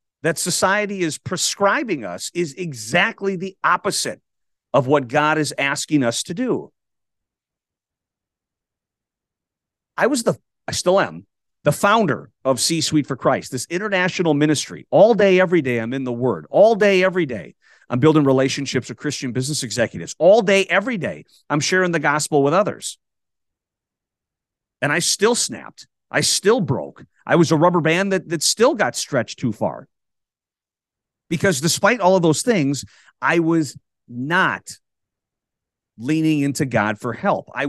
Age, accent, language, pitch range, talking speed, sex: 40-59, American, English, 130-175 Hz, 150 wpm, male